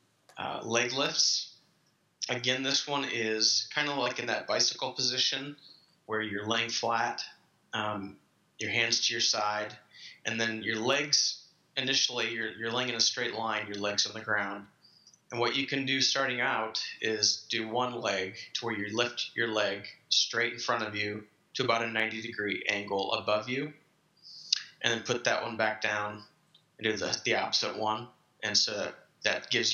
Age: 30-49